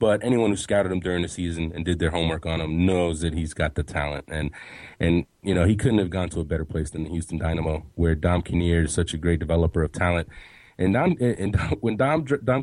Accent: American